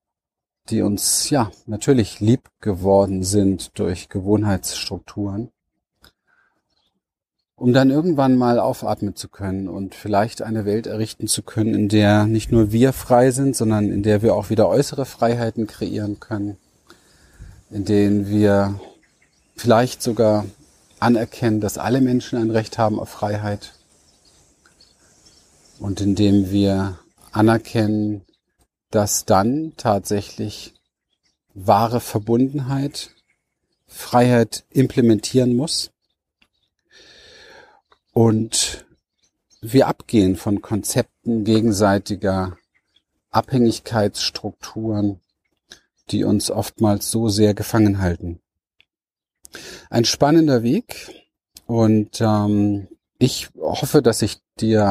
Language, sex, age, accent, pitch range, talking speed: German, male, 40-59, German, 100-115 Hz, 100 wpm